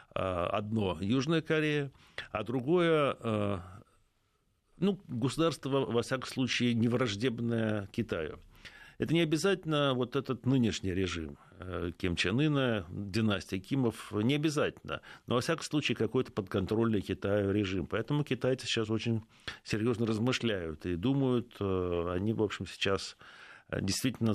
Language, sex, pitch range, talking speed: Russian, male, 100-125 Hz, 115 wpm